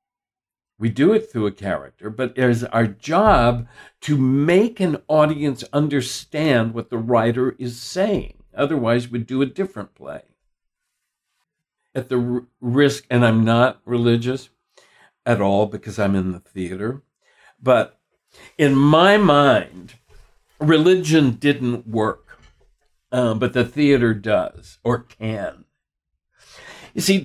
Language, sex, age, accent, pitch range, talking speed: English, male, 60-79, American, 115-155 Hz, 125 wpm